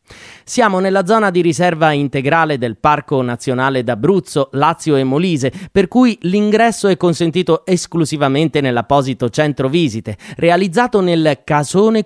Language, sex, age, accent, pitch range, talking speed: Italian, male, 30-49, native, 130-185 Hz, 125 wpm